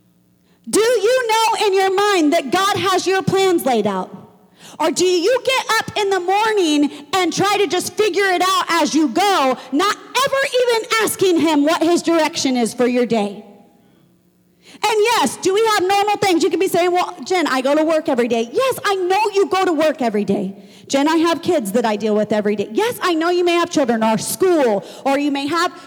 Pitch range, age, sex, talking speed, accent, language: 305-410 Hz, 40-59, female, 220 wpm, American, English